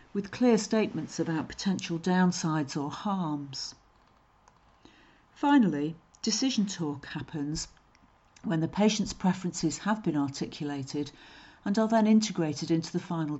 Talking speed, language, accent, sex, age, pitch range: 115 wpm, English, British, female, 50-69, 155-205 Hz